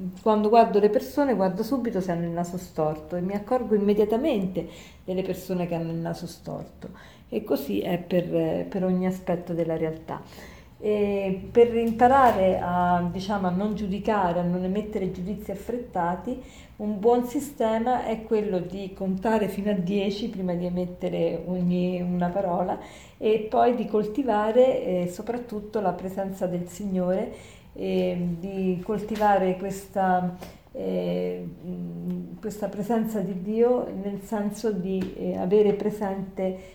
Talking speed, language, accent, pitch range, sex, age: 130 wpm, Italian, native, 175-215 Hz, female, 40-59